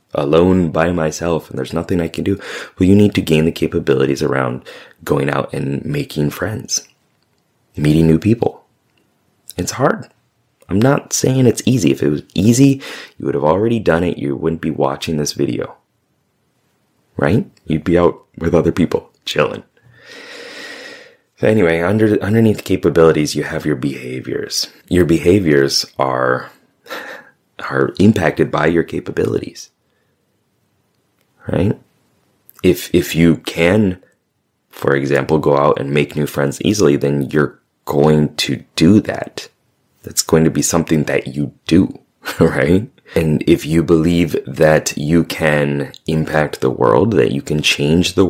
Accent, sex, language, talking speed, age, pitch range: American, male, English, 145 wpm, 30-49, 70-90 Hz